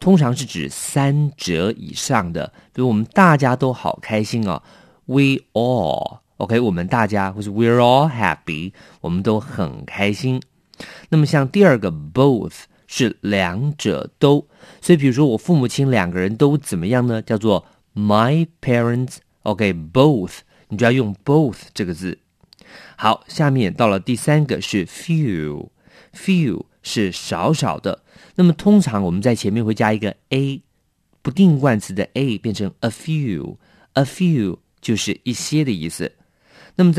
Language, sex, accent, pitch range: English, male, Chinese, 100-145 Hz